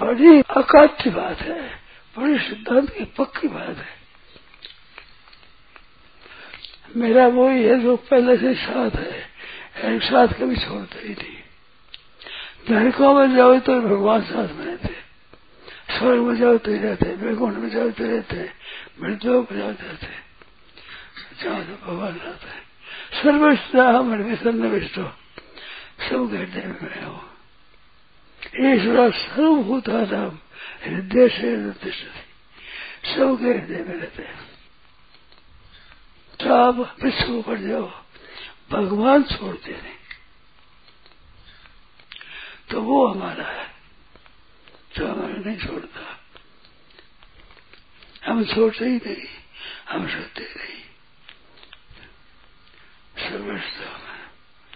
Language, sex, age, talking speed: Hindi, male, 60-79, 105 wpm